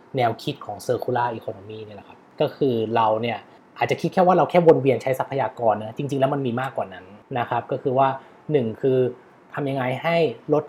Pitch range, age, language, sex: 125-160 Hz, 20-39, Thai, male